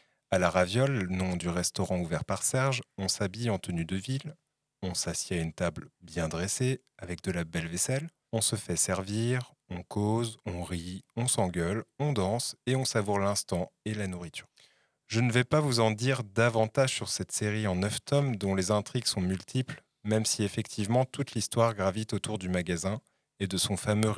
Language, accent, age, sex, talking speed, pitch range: French, French, 30-49, male, 195 wpm, 95-120 Hz